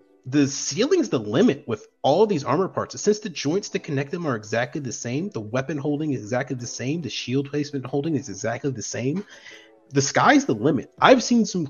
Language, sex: English, male